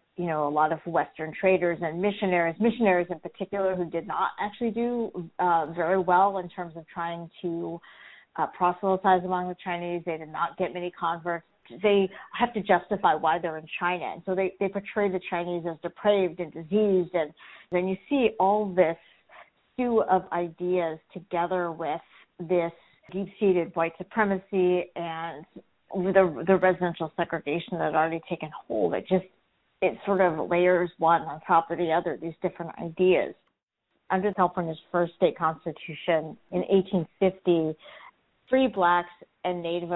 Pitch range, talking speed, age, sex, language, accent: 165-190 Hz, 160 wpm, 40-59, female, English, American